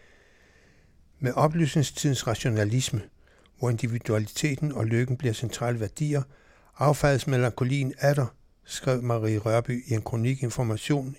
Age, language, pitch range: 60-79, Danish, 110-135 Hz